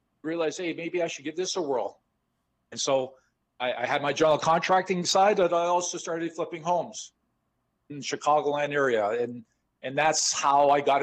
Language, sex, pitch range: English, male, 135-165 Hz